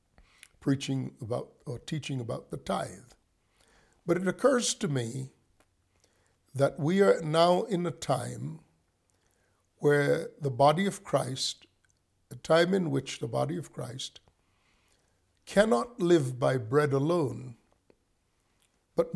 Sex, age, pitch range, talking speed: male, 60-79, 115-165 Hz, 120 wpm